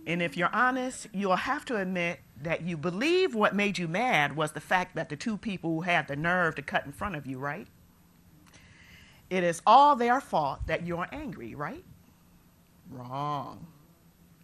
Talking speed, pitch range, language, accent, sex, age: 180 wpm, 160-210 Hz, English, American, male, 40-59